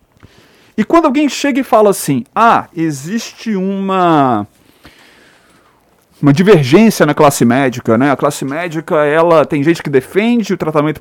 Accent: Brazilian